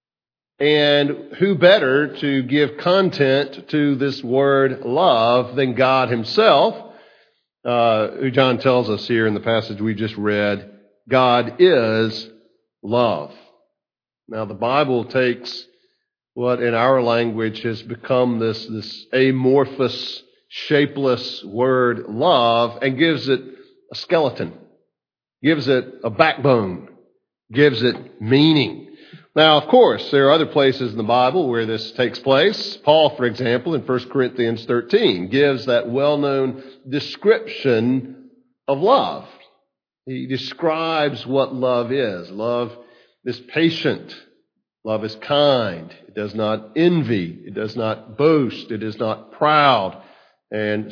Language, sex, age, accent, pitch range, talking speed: English, male, 50-69, American, 115-145 Hz, 125 wpm